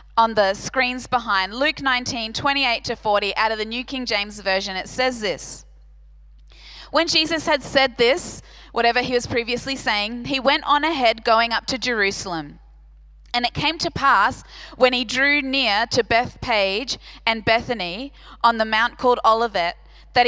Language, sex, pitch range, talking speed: English, female, 220-280 Hz, 165 wpm